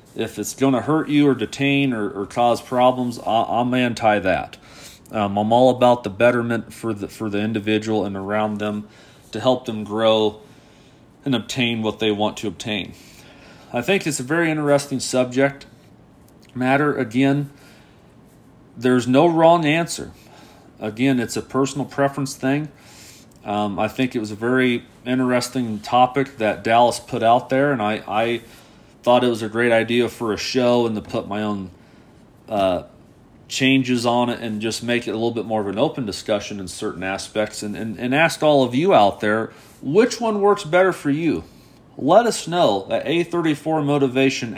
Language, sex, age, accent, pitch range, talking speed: English, male, 40-59, American, 115-155 Hz, 175 wpm